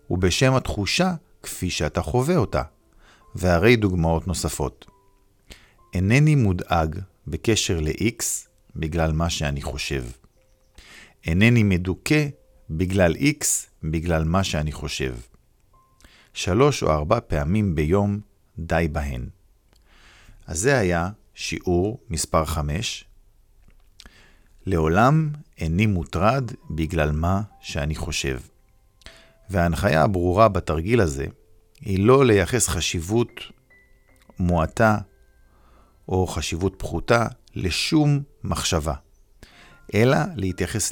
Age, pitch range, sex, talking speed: 50-69, 80-105 Hz, male, 90 wpm